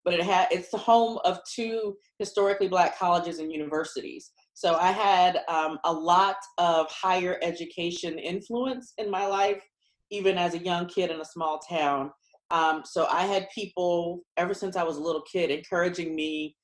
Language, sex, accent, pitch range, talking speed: English, female, American, 165-205 Hz, 175 wpm